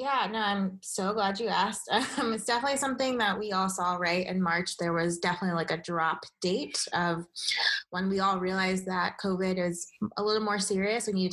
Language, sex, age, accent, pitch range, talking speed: English, female, 20-39, American, 180-205 Hz, 210 wpm